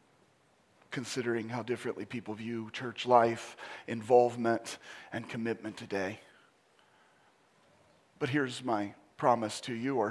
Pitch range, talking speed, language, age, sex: 120-155 Hz, 105 wpm, English, 40-59, male